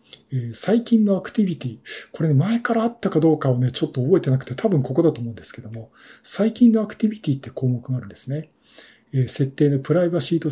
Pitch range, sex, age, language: 125-155 Hz, male, 50-69, Japanese